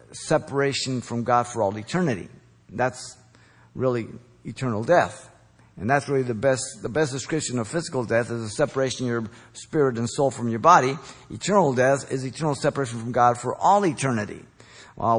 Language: English